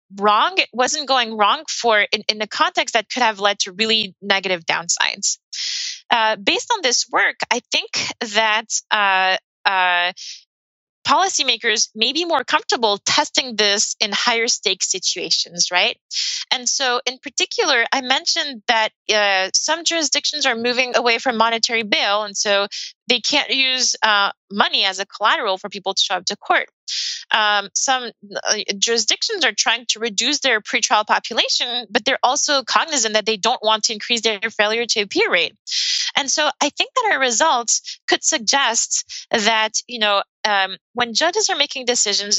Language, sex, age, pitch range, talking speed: English, female, 20-39, 210-280 Hz, 160 wpm